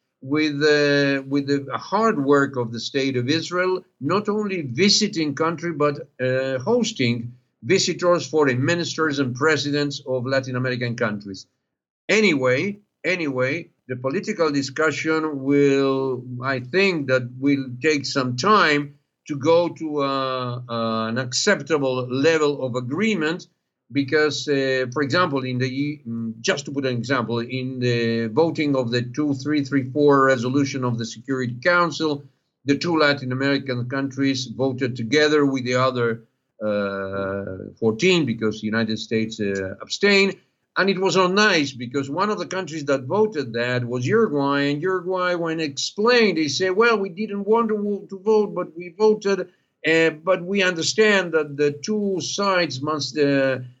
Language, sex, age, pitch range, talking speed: English, male, 50-69, 130-170 Hz, 145 wpm